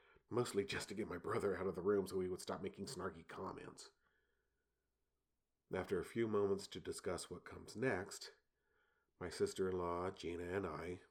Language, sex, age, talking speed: English, male, 40-59, 165 wpm